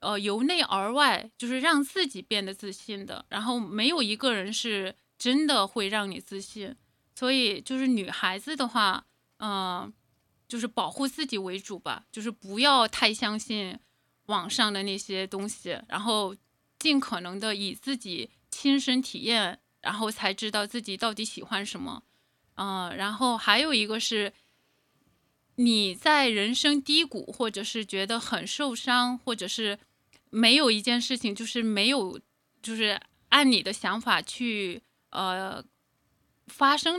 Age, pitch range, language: 20-39, 200-255 Hz, Chinese